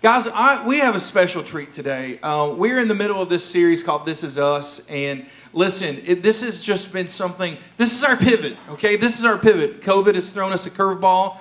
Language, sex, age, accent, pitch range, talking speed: English, male, 40-59, American, 165-205 Hz, 215 wpm